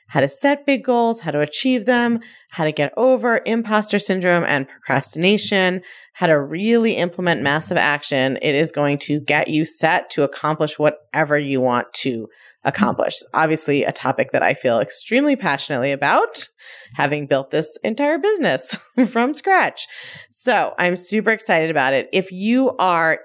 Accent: American